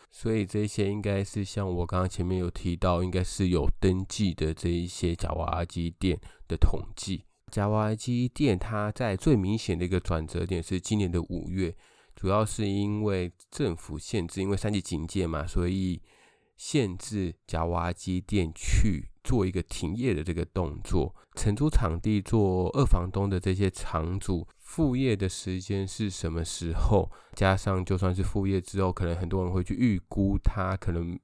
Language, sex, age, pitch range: Chinese, male, 20-39, 85-100 Hz